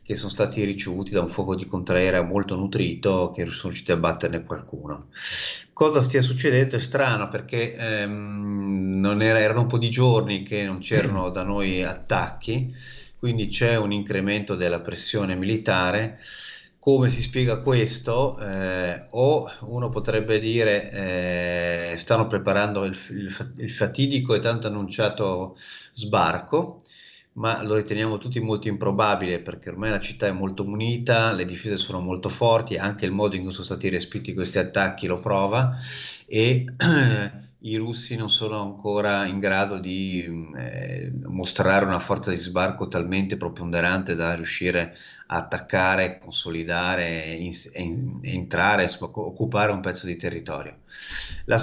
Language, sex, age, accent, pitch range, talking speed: Italian, male, 30-49, native, 90-115 Hz, 145 wpm